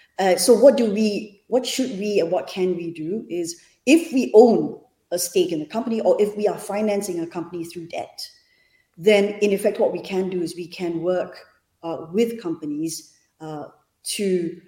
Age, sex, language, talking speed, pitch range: 30-49, female, English, 190 wpm, 165-200 Hz